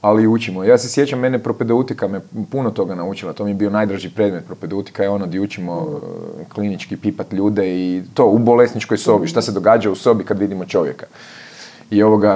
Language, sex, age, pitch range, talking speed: Croatian, male, 30-49, 100-115 Hz, 200 wpm